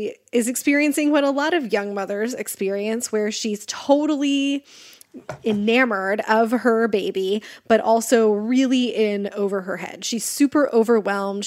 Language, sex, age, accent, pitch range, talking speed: English, female, 20-39, American, 205-250 Hz, 135 wpm